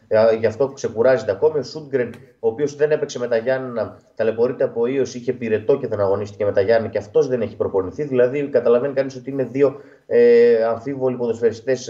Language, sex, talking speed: Greek, male, 190 wpm